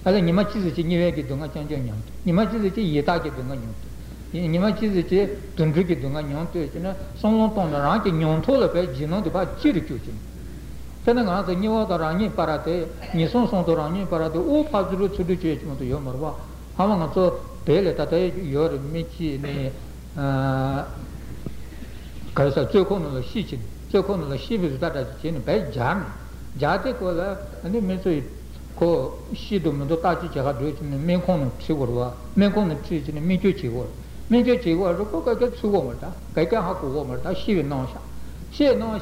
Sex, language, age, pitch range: male, Italian, 60-79, 145-195 Hz